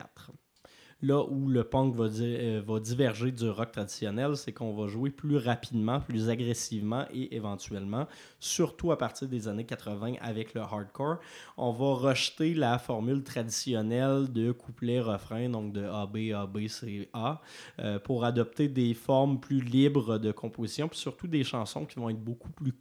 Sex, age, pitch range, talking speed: male, 20-39, 110-130 Hz, 165 wpm